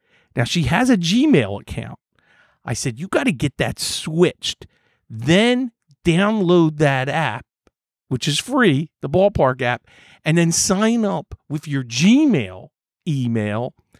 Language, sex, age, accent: English, male, 50-69, American